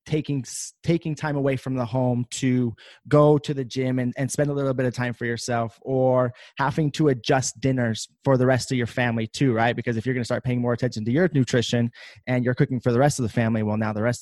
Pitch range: 110-135 Hz